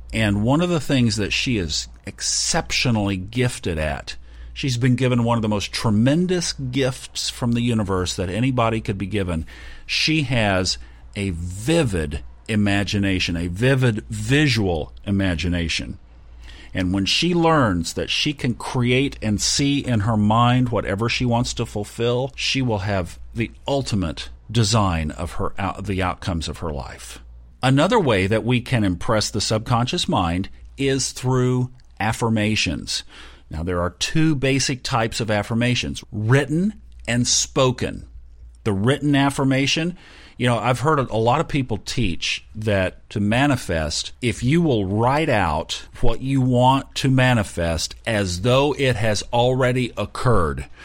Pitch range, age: 95-130 Hz, 50-69